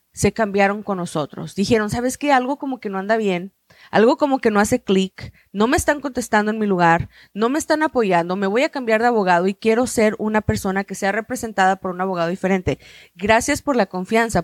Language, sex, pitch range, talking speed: Spanish, female, 215-280 Hz, 215 wpm